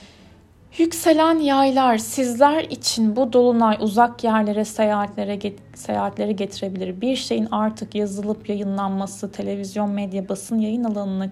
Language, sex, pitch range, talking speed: Turkish, female, 200-230 Hz, 105 wpm